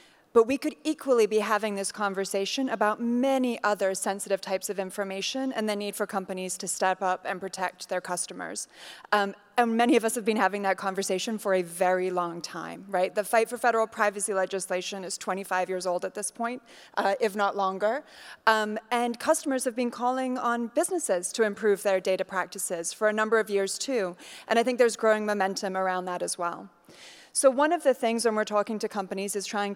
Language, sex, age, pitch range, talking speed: English, female, 20-39, 195-235 Hz, 205 wpm